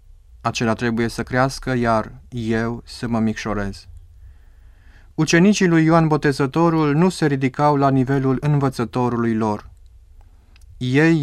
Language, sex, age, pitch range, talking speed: Romanian, male, 30-49, 95-145 Hz, 110 wpm